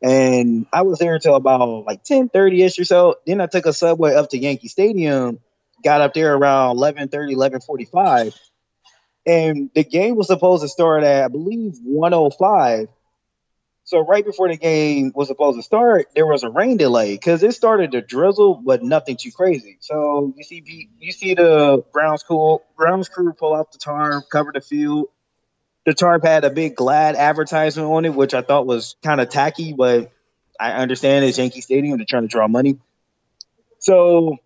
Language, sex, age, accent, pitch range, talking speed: English, male, 20-39, American, 130-170 Hz, 185 wpm